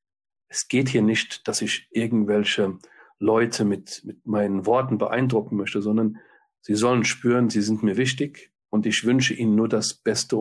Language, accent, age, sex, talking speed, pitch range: German, German, 40-59, male, 165 wpm, 105-125 Hz